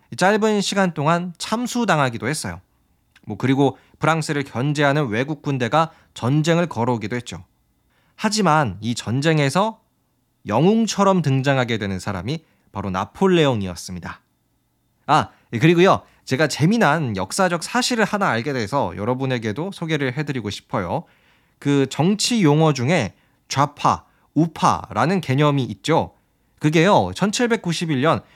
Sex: male